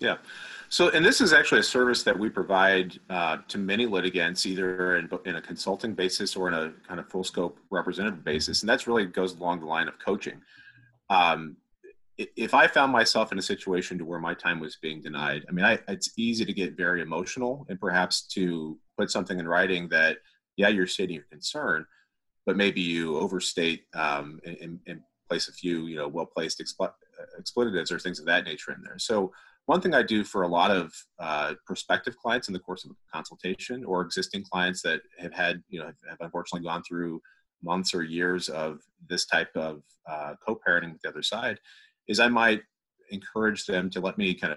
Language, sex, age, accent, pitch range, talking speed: English, male, 30-49, American, 85-100 Hz, 200 wpm